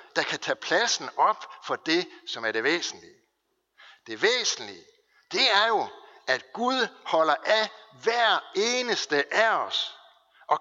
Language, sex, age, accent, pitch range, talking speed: Danish, male, 60-79, native, 280-420 Hz, 140 wpm